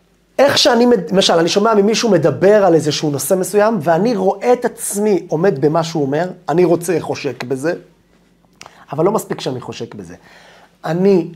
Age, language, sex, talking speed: 30-49, Hebrew, male, 160 wpm